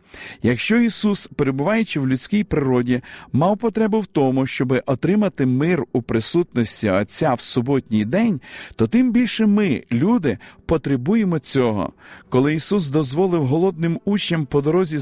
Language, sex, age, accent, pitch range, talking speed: Ukrainian, male, 50-69, native, 135-185 Hz, 130 wpm